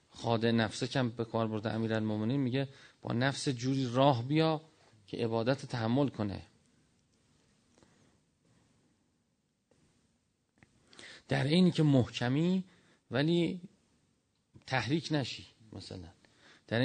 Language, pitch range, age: Persian, 115-140 Hz, 40-59